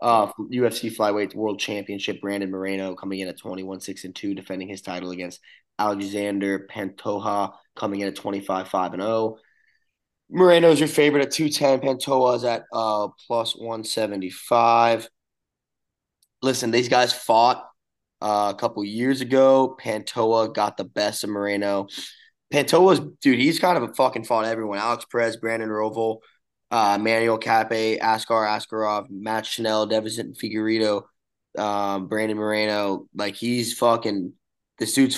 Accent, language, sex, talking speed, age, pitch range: American, English, male, 145 wpm, 20-39, 100-120 Hz